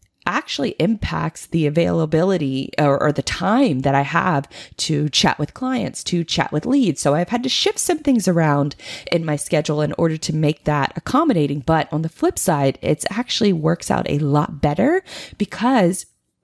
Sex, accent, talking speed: female, American, 180 wpm